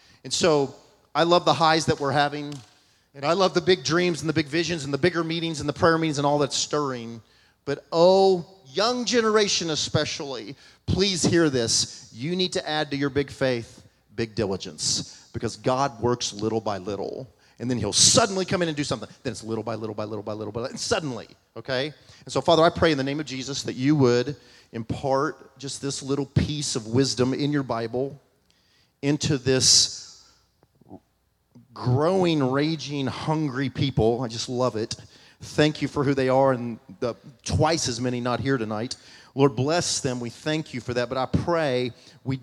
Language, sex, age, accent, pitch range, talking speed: English, male, 40-59, American, 120-145 Hz, 195 wpm